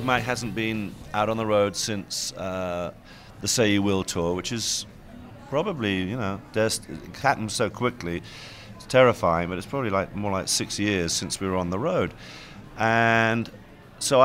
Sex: male